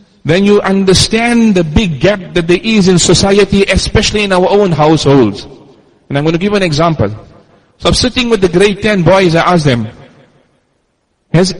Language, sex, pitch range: English, male, 145-195 Hz